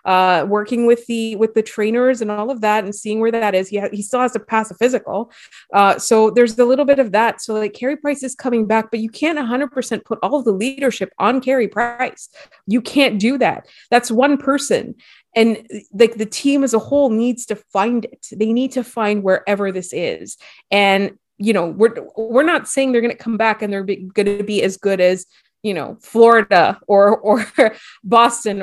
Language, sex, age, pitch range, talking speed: English, female, 30-49, 205-250 Hz, 210 wpm